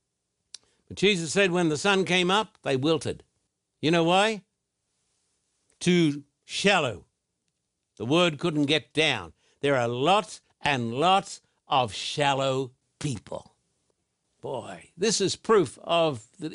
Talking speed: 125 wpm